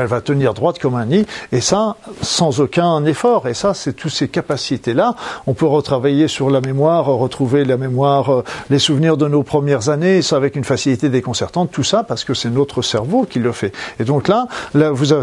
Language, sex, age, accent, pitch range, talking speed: French, male, 50-69, French, 130-170 Hz, 205 wpm